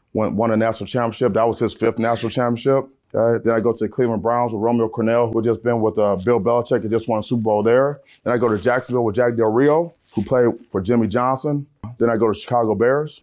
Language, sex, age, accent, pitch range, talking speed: English, male, 30-49, American, 115-140 Hz, 260 wpm